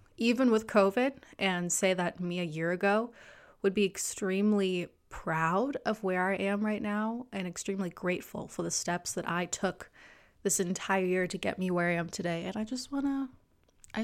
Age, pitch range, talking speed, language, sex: 20-39, 185-230 Hz, 190 wpm, English, female